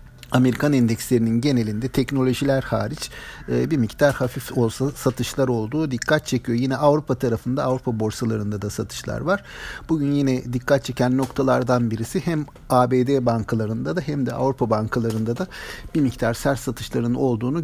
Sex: male